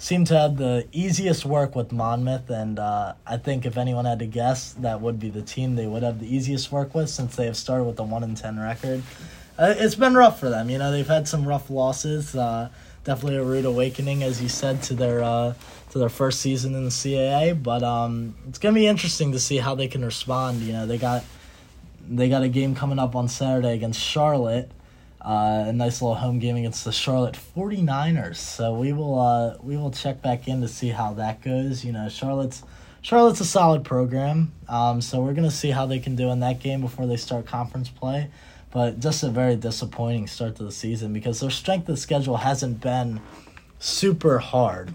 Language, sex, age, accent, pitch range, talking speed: English, male, 20-39, American, 115-140 Hz, 220 wpm